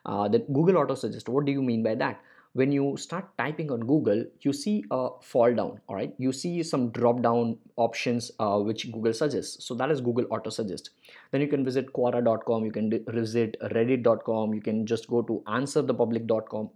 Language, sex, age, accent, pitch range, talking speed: English, male, 20-39, Indian, 115-145 Hz, 195 wpm